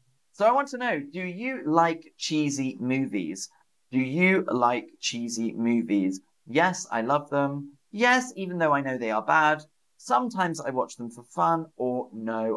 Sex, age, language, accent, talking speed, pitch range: male, 30-49, English, British, 165 wpm, 120-180 Hz